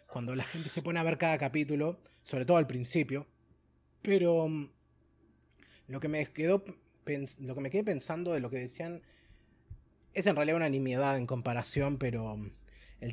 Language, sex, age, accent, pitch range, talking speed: Spanish, male, 20-39, Argentinian, 115-150 Hz, 165 wpm